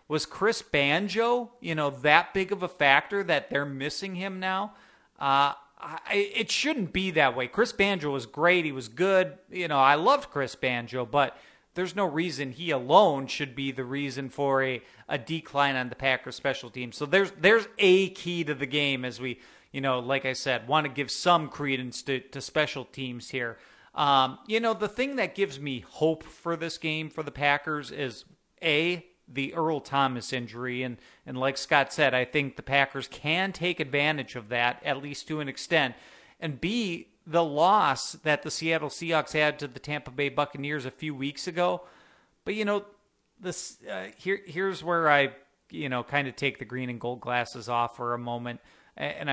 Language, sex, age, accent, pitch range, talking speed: English, male, 40-59, American, 130-170 Hz, 195 wpm